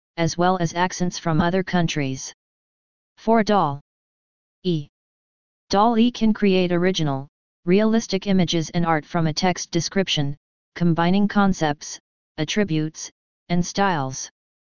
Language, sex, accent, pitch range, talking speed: English, female, American, 165-195 Hz, 115 wpm